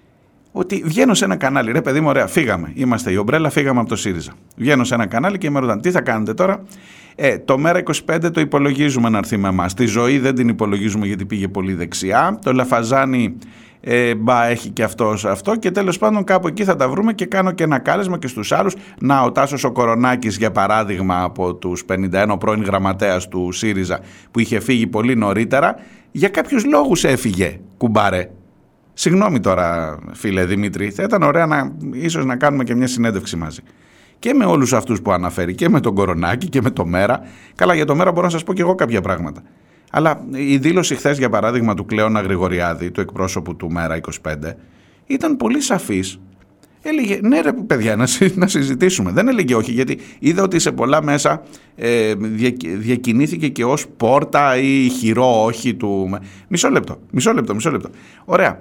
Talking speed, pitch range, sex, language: 190 wpm, 95-145 Hz, male, Greek